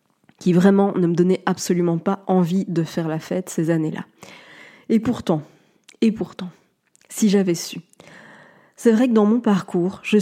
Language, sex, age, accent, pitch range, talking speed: French, female, 20-39, French, 185-230 Hz, 165 wpm